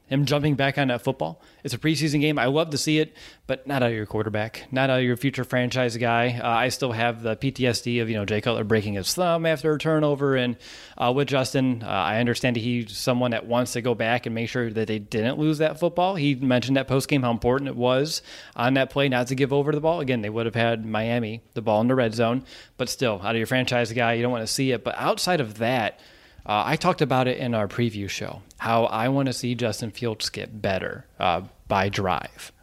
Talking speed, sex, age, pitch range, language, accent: 250 wpm, male, 20-39, 115-140 Hz, English, American